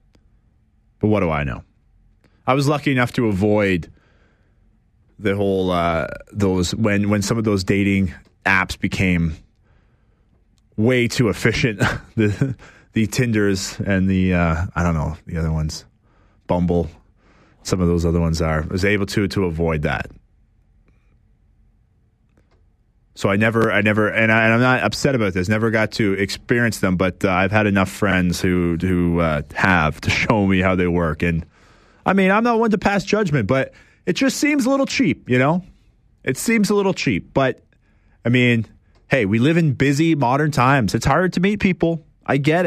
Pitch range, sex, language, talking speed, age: 95-125 Hz, male, English, 175 wpm, 30-49